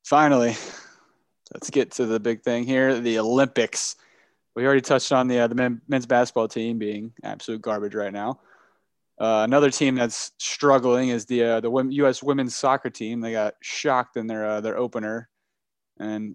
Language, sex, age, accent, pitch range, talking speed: English, male, 20-39, American, 105-120 Hz, 175 wpm